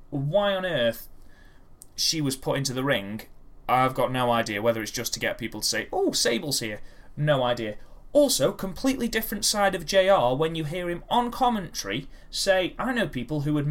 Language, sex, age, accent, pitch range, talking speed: English, male, 30-49, British, 125-170 Hz, 195 wpm